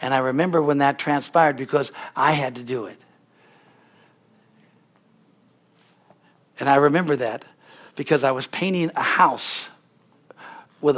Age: 60-79